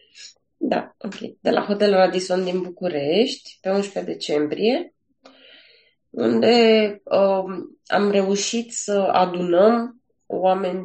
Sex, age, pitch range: female, 20-39, 185-235 Hz